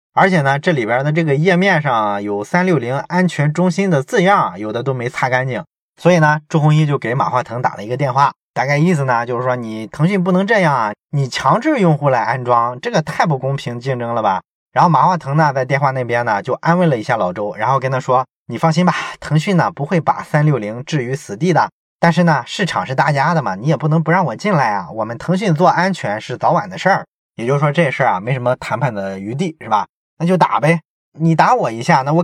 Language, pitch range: Chinese, 130-180 Hz